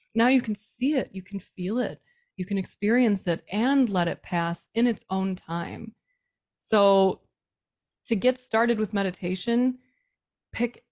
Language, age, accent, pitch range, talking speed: English, 20-39, American, 185-230 Hz, 155 wpm